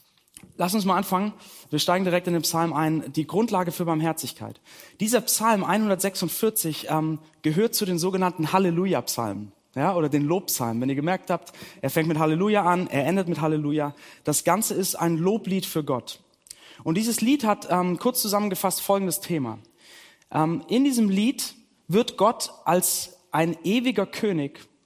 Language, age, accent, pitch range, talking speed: German, 30-49, German, 155-205 Hz, 160 wpm